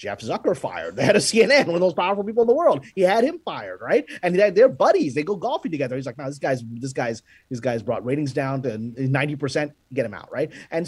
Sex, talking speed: male, 260 wpm